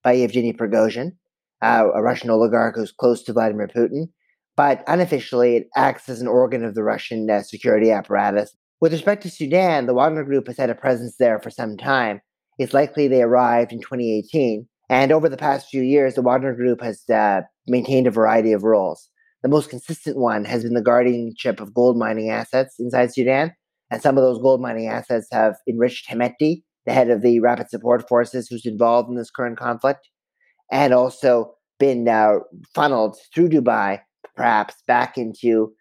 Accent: American